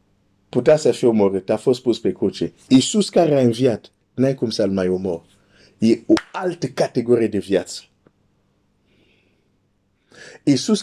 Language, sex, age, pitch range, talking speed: Romanian, male, 50-69, 100-125 Hz, 140 wpm